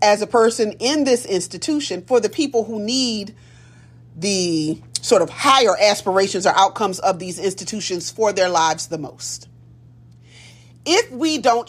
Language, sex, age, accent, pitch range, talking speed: English, female, 30-49, American, 165-265 Hz, 150 wpm